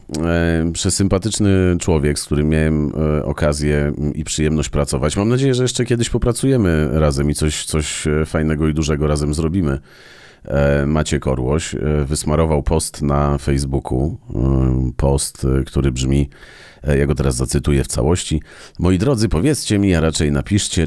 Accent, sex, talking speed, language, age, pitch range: native, male, 135 wpm, Polish, 40-59, 70-85 Hz